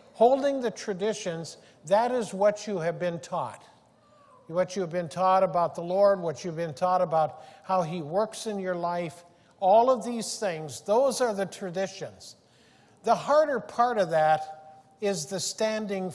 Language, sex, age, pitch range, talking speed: English, male, 50-69, 180-225 Hz, 165 wpm